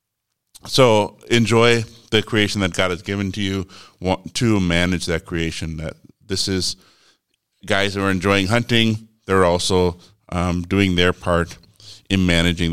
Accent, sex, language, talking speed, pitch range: American, male, English, 145 wpm, 85-105 Hz